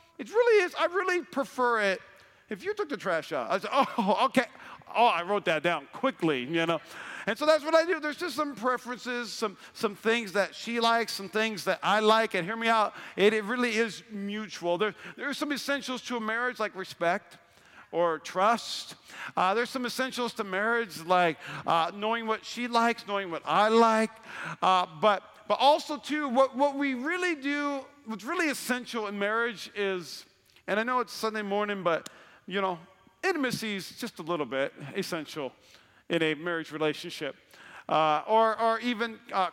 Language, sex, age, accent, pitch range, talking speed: English, male, 50-69, American, 180-250 Hz, 190 wpm